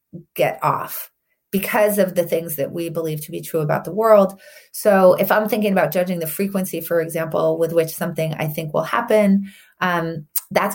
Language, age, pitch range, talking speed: English, 30-49, 165-200 Hz, 190 wpm